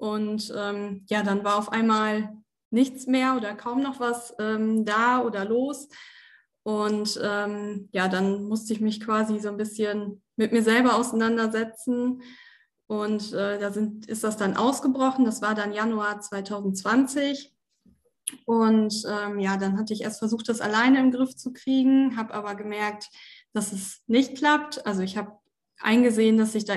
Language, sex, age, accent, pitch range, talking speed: German, female, 20-39, German, 210-250 Hz, 165 wpm